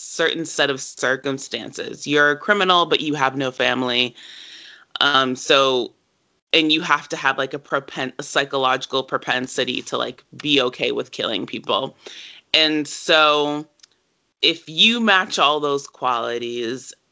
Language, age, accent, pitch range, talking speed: English, 20-39, American, 130-160 Hz, 140 wpm